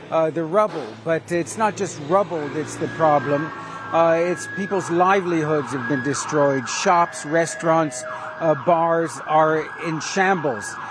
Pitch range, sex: 150-175 Hz, male